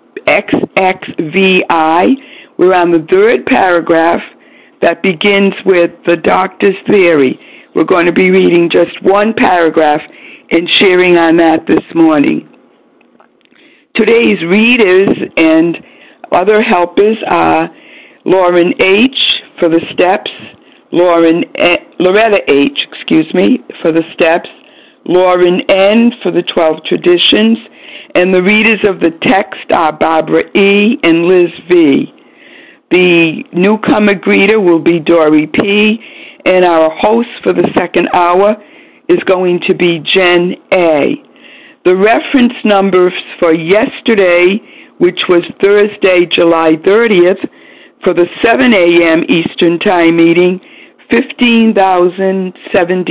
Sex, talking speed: female, 115 wpm